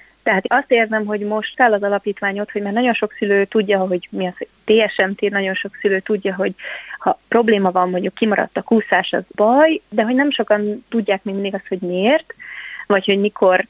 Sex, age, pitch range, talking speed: female, 30-49, 190-215 Hz, 200 wpm